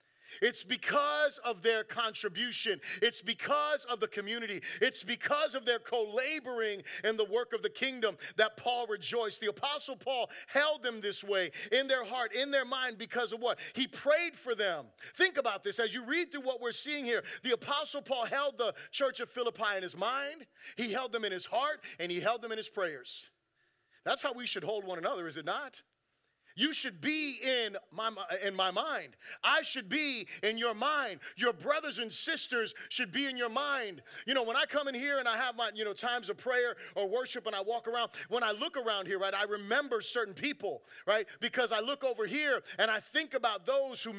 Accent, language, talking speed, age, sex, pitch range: American, English, 210 wpm, 40-59, male, 225-285 Hz